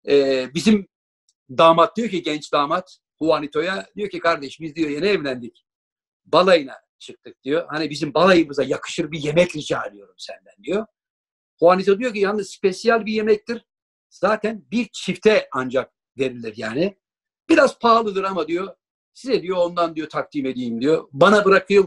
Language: Turkish